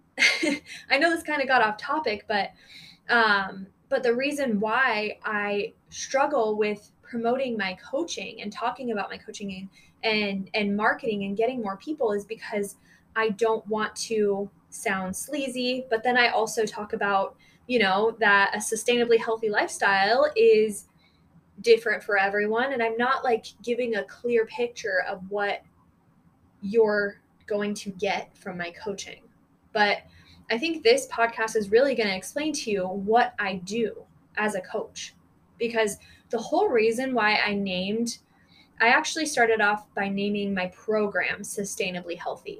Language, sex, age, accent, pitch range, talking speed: English, female, 20-39, American, 205-255 Hz, 155 wpm